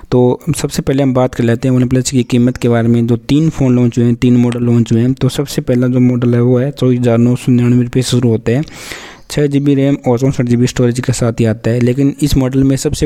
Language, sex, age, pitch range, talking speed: Hindi, male, 20-39, 120-135 Hz, 255 wpm